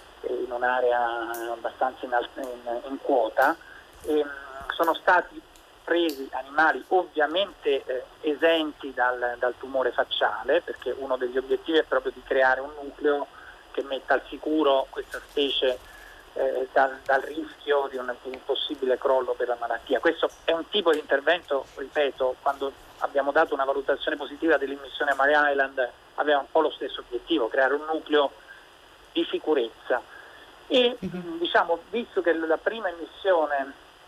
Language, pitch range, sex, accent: Italian, 135-195 Hz, male, native